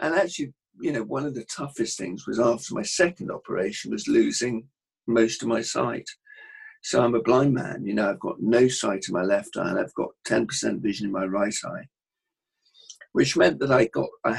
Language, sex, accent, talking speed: English, male, British, 210 wpm